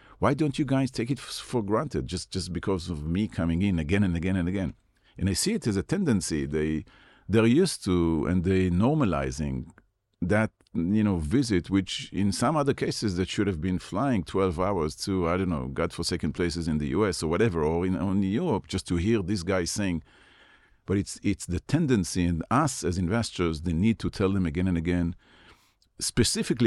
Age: 50-69